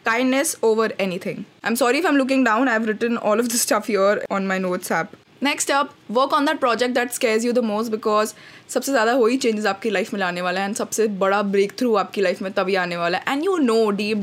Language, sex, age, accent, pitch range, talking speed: Hindi, female, 20-39, native, 200-255 Hz, 245 wpm